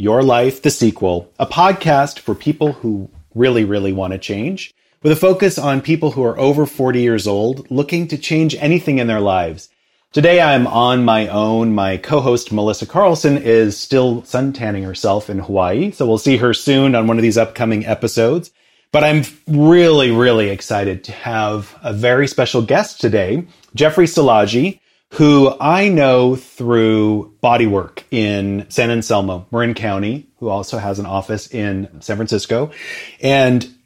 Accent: American